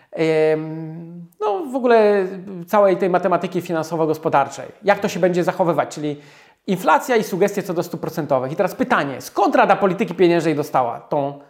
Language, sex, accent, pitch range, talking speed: Polish, male, native, 160-190 Hz, 150 wpm